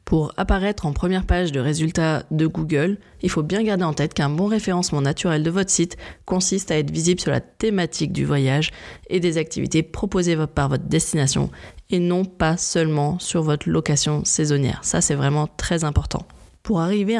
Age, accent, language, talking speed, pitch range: 20-39, French, French, 185 wpm, 150-180 Hz